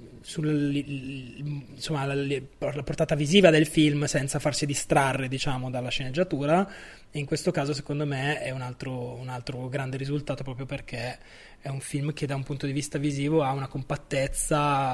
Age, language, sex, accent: 20-39, Italian, male, native